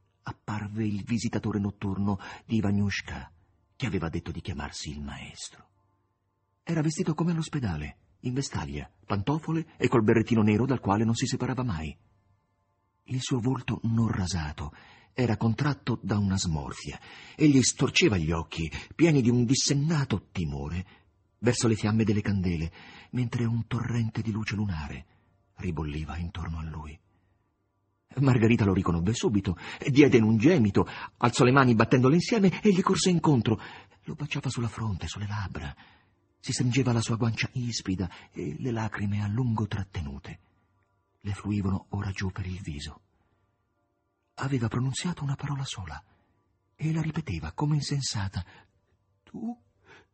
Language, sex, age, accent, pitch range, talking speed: Italian, male, 40-59, native, 95-125 Hz, 140 wpm